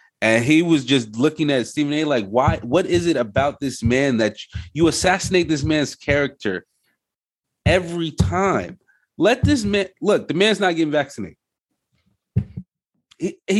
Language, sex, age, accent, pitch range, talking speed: English, male, 30-49, American, 125-170 Hz, 150 wpm